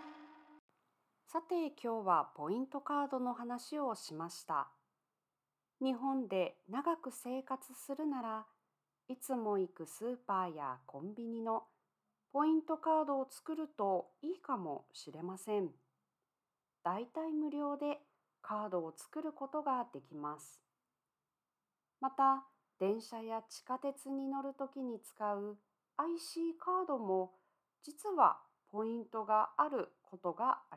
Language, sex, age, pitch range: Japanese, female, 40-59, 200-290 Hz